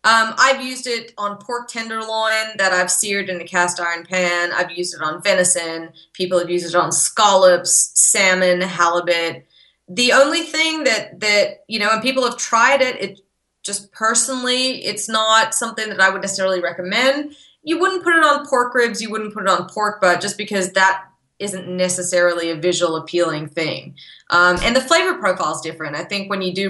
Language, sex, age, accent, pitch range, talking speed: English, female, 20-39, American, 175-225 Hz, 195 wpm